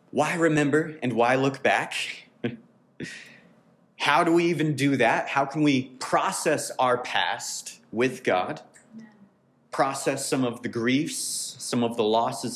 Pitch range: 125-165 Hz